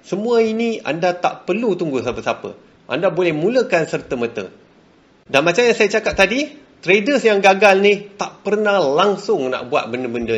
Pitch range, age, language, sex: 140-210 Hz, 30-49, Malay, male